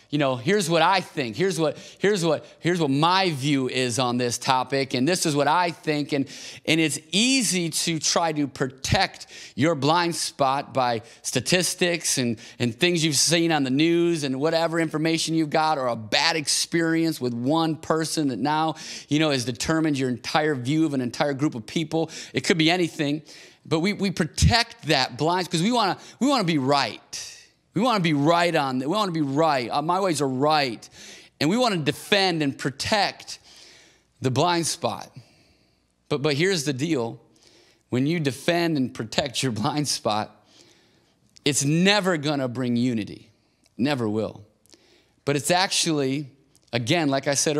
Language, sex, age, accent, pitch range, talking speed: English, male, 30-49, American, 135-170 Hz, 180 wpm